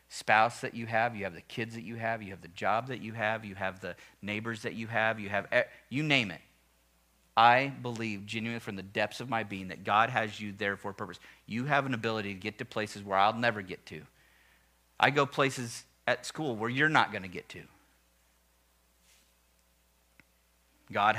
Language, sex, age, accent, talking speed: English, male, 40-59, American, 205 wpm